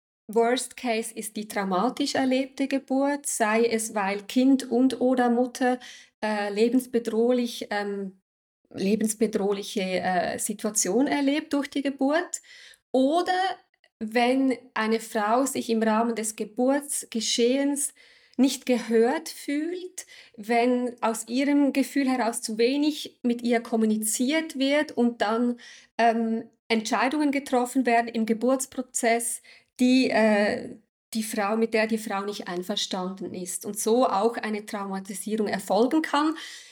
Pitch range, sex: 215-255 Hz, female